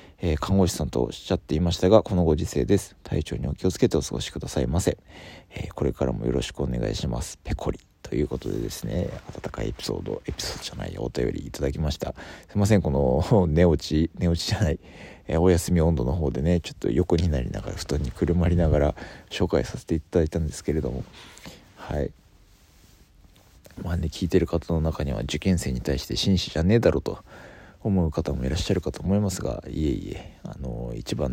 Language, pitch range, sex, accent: Japanese, 70-95 Hz, male, native